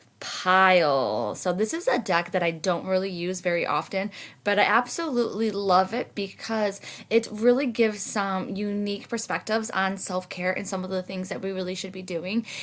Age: 20-39